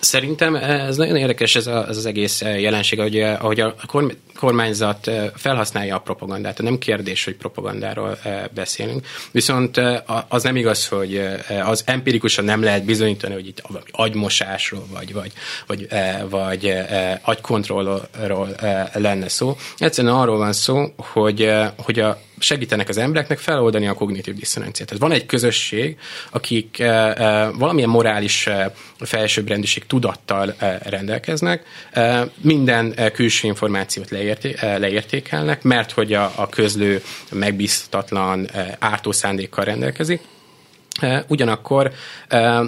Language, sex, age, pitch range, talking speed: Hungarian, male, 20-39, 100-120 Hz, 125 wpm